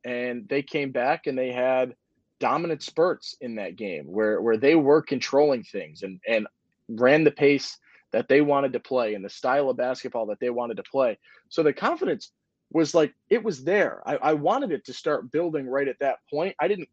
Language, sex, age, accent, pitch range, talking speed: English, male, 20-39, American, 125-150 Hz, 210 wpm